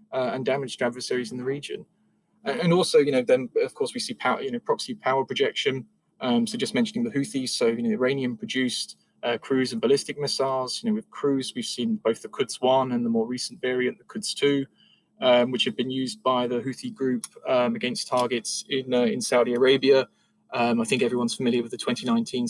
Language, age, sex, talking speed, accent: English, 20-39, male, 205 wpm, British